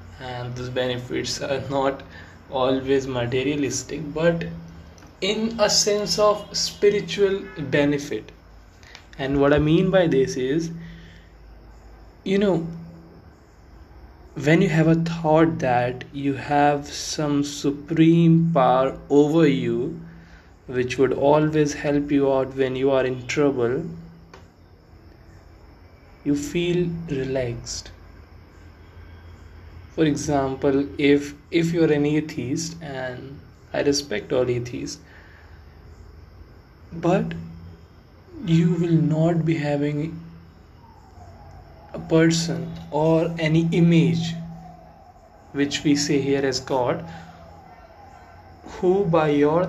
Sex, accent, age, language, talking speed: male, native, 20-39, Hindi, 100 wpm